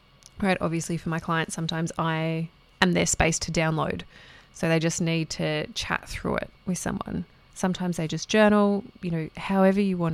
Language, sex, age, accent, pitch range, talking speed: English, female, 20-39, Australian, 160-190 Hz, 185 wpm